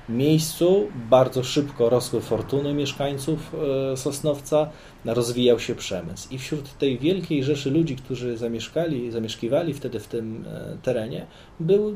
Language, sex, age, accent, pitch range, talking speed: Polish, male, 30-49, native, 115-155 Hz, 120 wpm